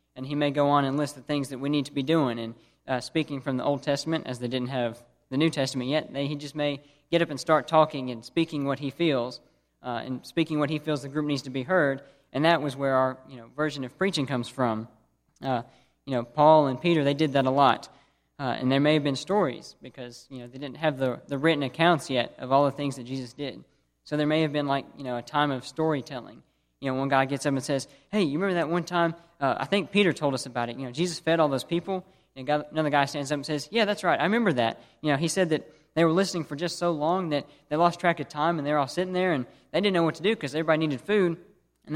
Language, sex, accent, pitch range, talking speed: English, male, American, 130-160 Hz, 275 wpm